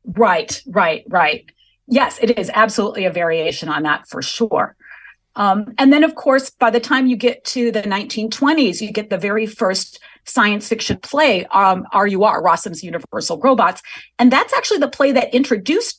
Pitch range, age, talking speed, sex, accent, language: 195-255 Hz, 40-59, 175 wpm, female, American, English